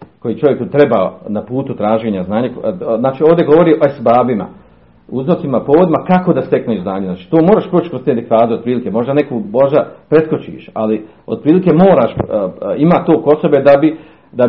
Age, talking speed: 40-59, 155 wpm